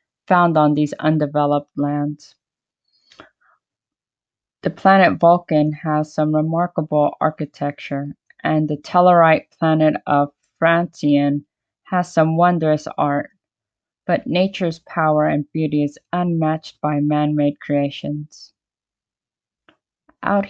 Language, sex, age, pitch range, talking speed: English, female, 20-39, 150-175 Hz, 100 wpm